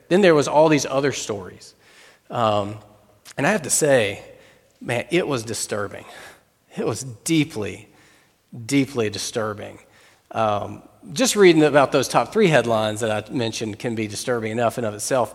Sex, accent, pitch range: male, American, 110-150 Hz